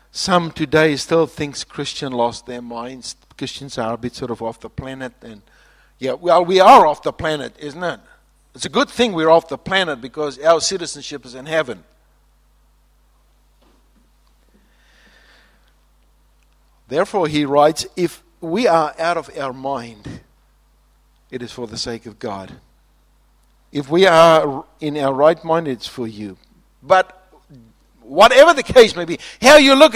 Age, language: 50-69, English